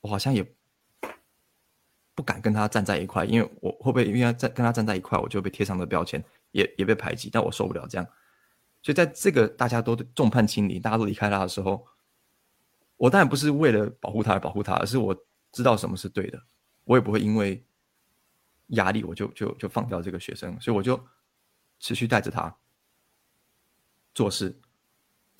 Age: 20-39